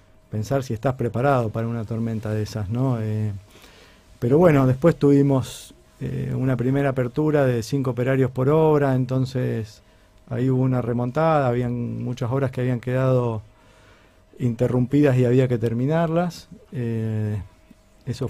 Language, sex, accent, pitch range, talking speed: Spanish, male, Argentinian, 110-135 Hz, 140 wpm